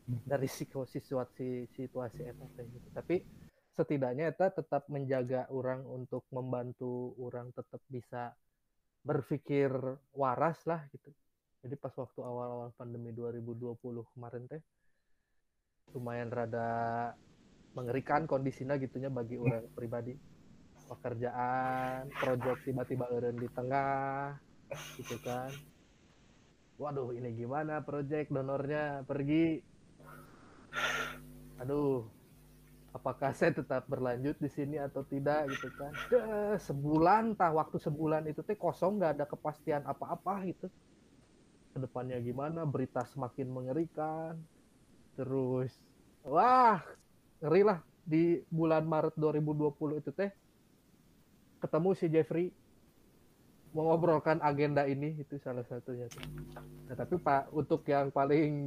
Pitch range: 125-155 Hz